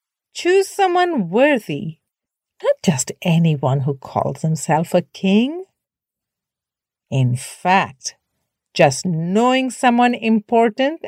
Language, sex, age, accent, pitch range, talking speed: English, female, 50-69, Indian, 165-245 Hz, 90 wpm